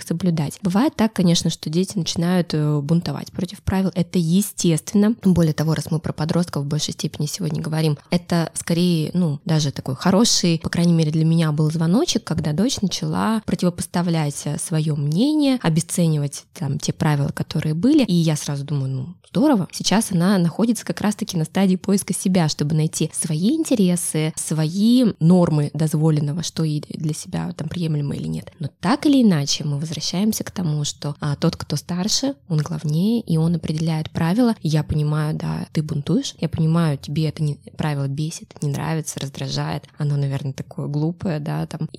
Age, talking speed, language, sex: 20-39, 170 wpm, Russian, female